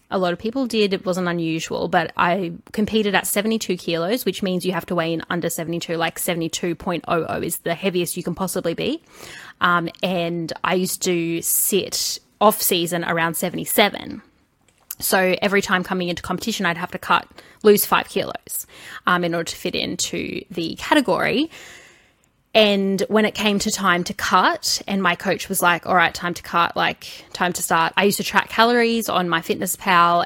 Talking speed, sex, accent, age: 185 wpm, female, Australian, 20-39